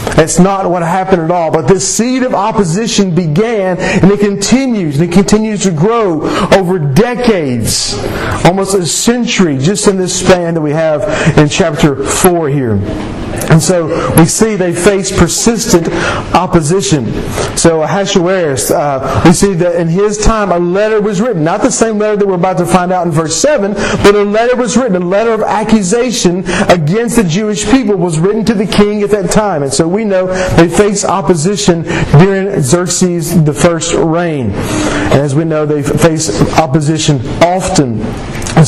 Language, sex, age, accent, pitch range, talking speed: English, male, 40-59, American, 165-205 Hz, 175 wpm